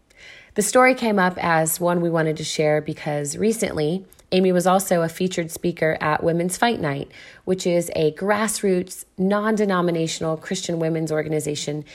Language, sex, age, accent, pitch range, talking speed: English, female, 30-49, American, 155-200 Hz, 150 wpm